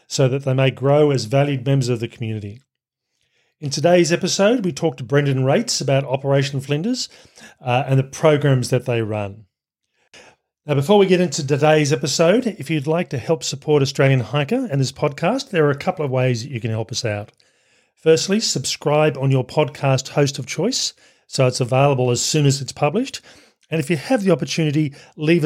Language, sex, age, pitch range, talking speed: English, male, 40-59, 125-160 Hz, 195 wpm